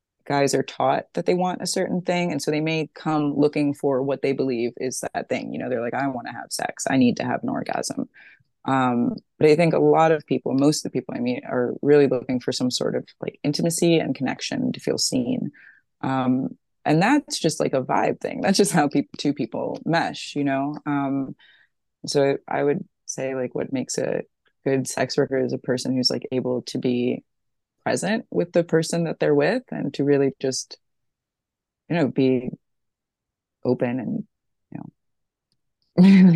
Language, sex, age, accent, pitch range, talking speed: English, female, 20-39, American, 130-155 Hz, 195 wpm